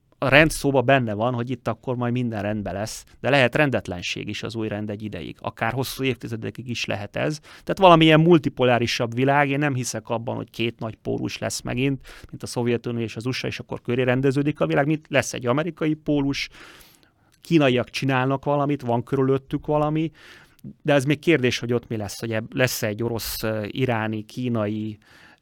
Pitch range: 115-135 Hz